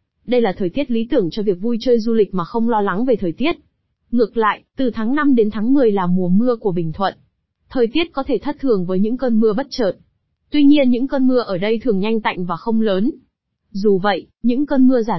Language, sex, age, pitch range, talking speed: Vietnamese, female, 20-39, 195-250 Hz, 255 wpm